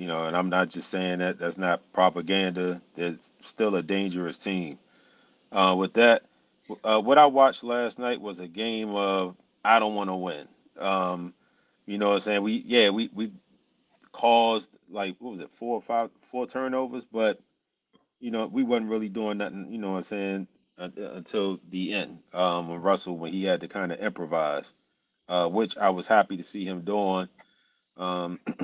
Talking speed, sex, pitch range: 190 wpm, male, 90-115 Hz